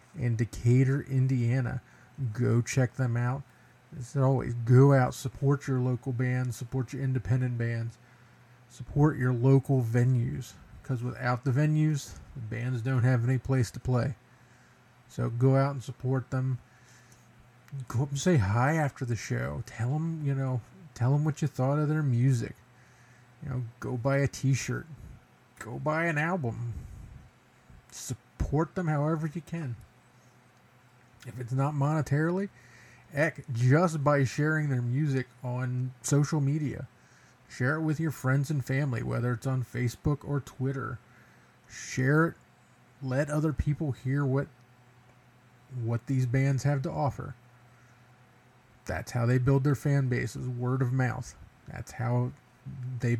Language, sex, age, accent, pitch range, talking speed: English, male, 40-59, American, 125-140 Hz, 145 wpm